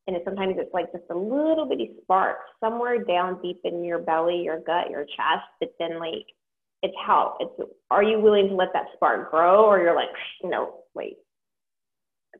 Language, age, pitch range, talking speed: English, 30-49, 170-220 Hz, 195 wpm